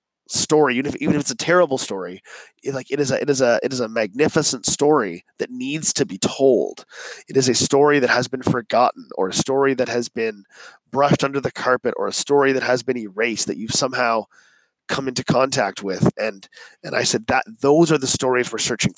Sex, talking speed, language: male, 220 wpm, English